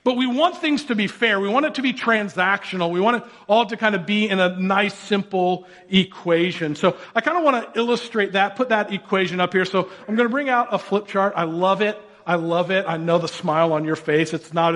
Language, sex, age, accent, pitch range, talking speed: English, male, 40-59, American, 160-200 Hz, 255 wpm